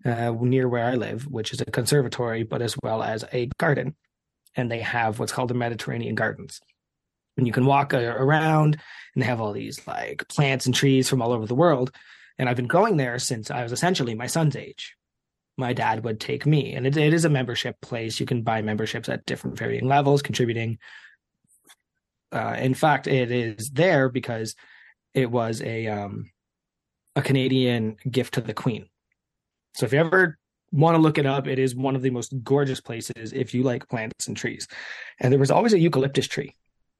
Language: English